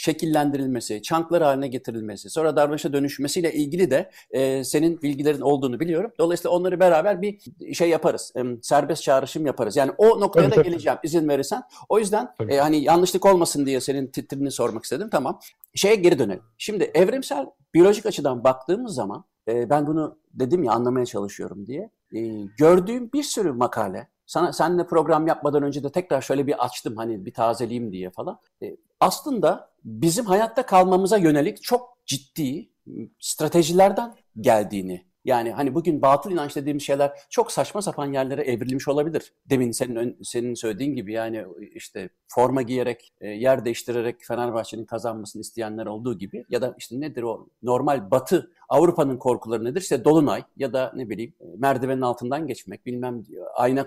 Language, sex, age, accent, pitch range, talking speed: Turkish, male, 60-79, native, 120-170 Hz, 155 wpm